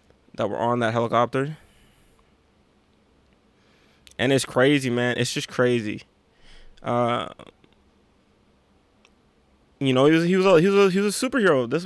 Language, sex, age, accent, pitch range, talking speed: English, male, 20-39, American, 120-150 Hz, 140 wpm